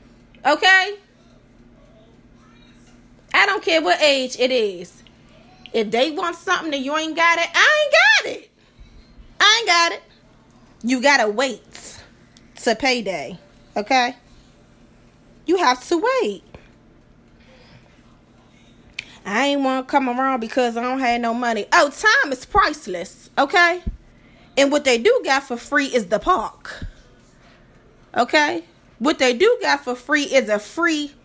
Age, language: 20-39, English